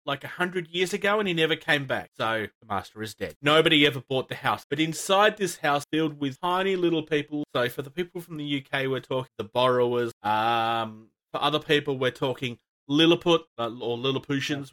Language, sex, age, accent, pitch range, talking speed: English, male, 30-49, Australian, 125-165 Hz, 200 wpm